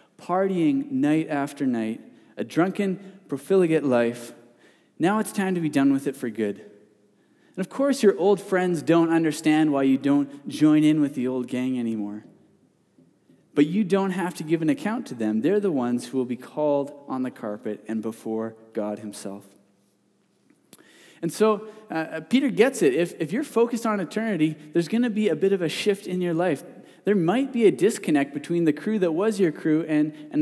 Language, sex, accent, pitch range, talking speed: English, male, American, 145-215 Hz, 195 wpm